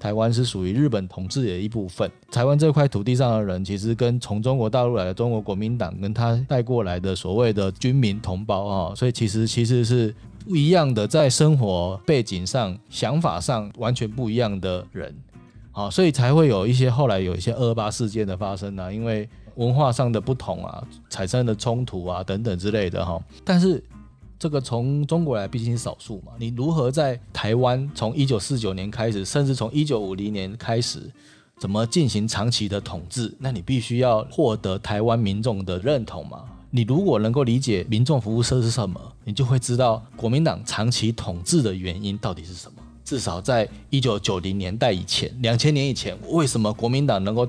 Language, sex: Chinese, male